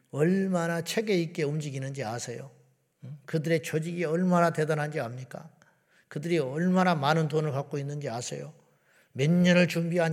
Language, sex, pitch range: Korean, male, 150-180 Hz